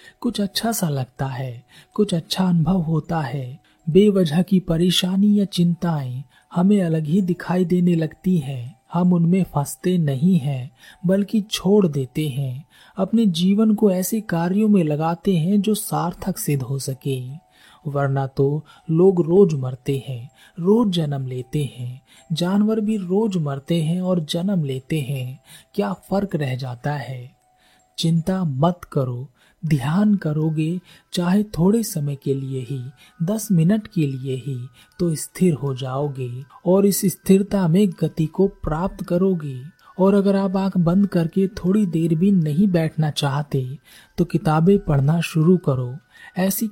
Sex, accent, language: male, native, Hindi